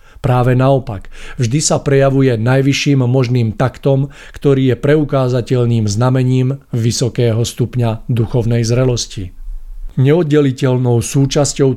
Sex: male